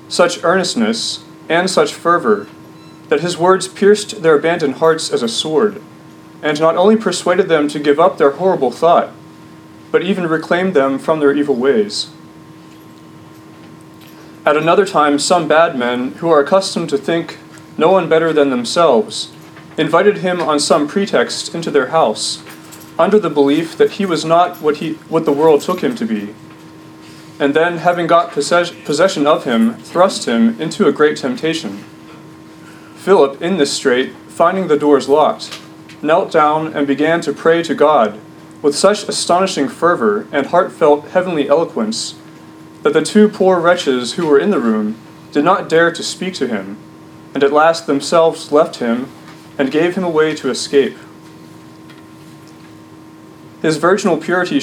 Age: 30-49